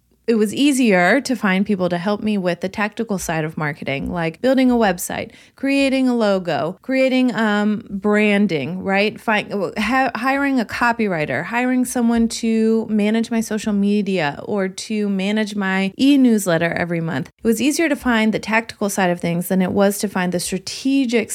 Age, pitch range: 20-39, 185-235 Hz